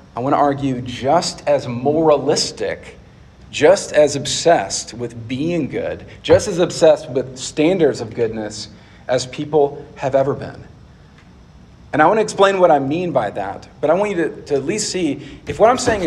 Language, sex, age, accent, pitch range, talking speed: English, male, 40-59, American, 125-165 Hz, 170 wpm